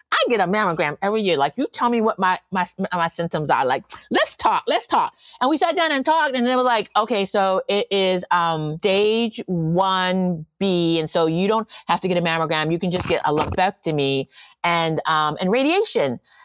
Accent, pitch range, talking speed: American, 185-265 Hz, 210 wpm